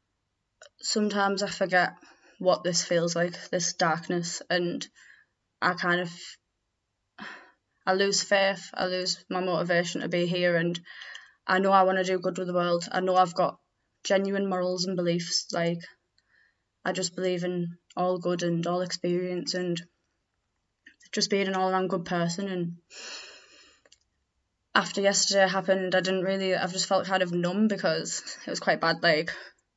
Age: 10-29